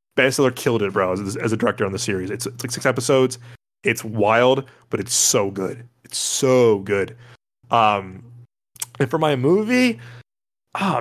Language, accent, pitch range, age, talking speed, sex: English, American, 115-130 Hz, 20-39, 170 wpm, male